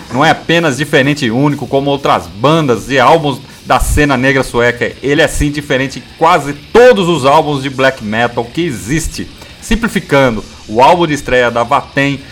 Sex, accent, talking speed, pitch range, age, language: male, Brazilian, 175 wpm, 120-155 Hz, 40-59, Portuguese